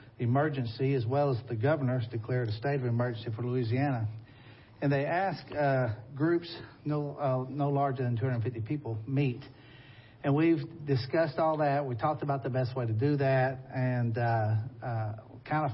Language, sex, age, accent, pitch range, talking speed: English, male, 50-69, American, 115-135 Hz, 170 wpm